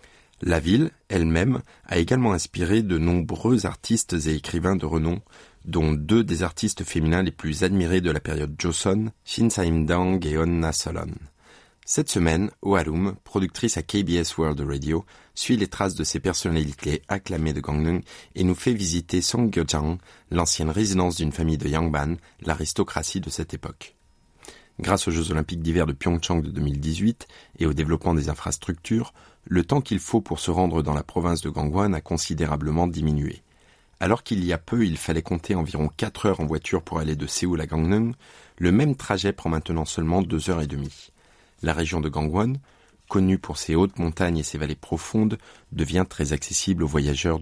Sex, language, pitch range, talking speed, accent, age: male, French, 80-110 Hz, 175 wpm, French, 30-49